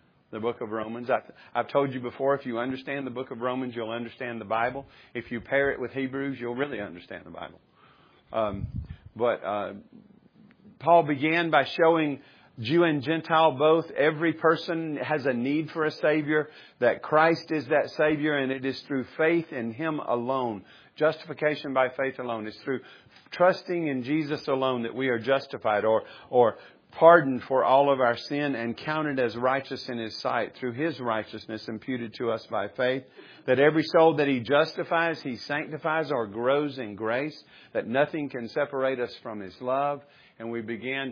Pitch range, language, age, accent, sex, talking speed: 120-150 Hz, English, 50-69, American, male, 180 wpm